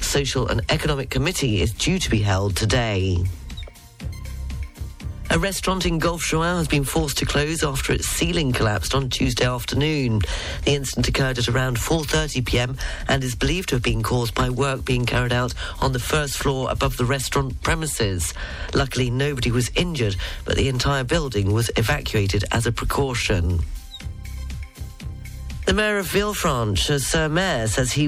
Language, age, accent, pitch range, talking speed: English, 40-59, British, 105-145 Hz, 160 wpm